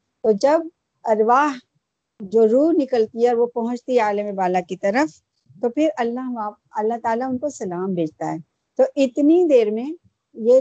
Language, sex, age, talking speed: Urdu, female, 50-69, 165 wpm